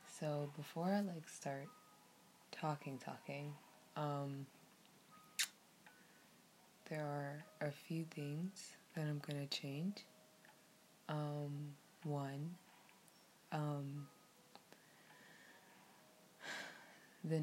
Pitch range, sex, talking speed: 140-165 Hz, female, 70 wpm